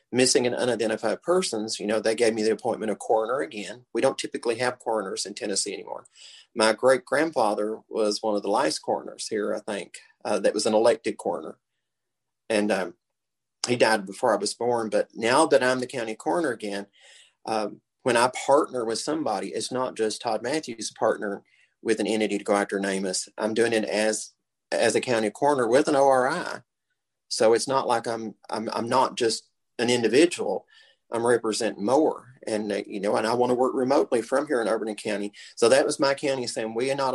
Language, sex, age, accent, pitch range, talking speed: English, male, 40-59, American, 110-130 Hz, 200 wpm